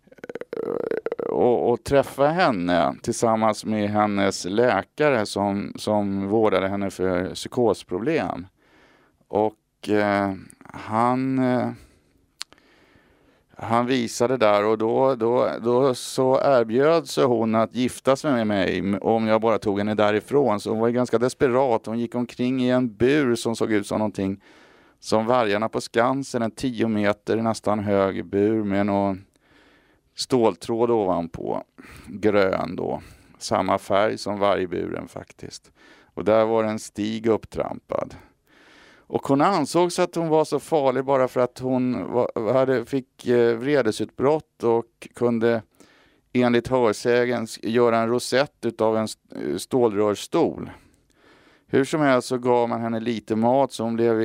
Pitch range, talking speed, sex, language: 105-125 Hz, 135 wpm, male, Swedish